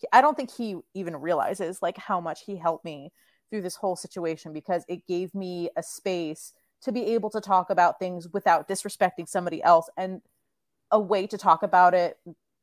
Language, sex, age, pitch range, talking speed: English, female, 30-49, 175-220 Hz, 190 wpm